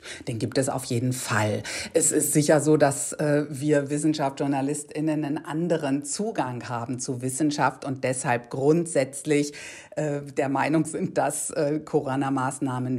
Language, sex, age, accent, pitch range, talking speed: German, female, 50-69, German, 125-155 Hz, 140 wpm